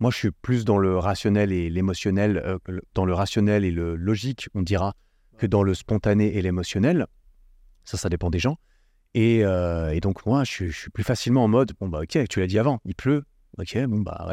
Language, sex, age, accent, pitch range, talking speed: French, male, 30-49, French, 100-130 Hz, 220 wpm